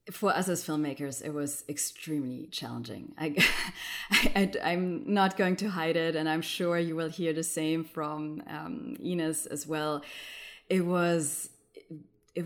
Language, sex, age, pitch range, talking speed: English, female, 20-39, 155-185 Hz, 155 wpm